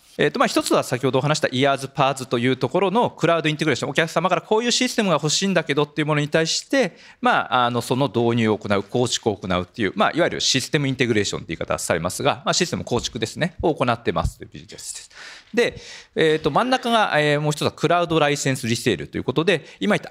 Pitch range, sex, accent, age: 120-170 Hz, male, native, 40-59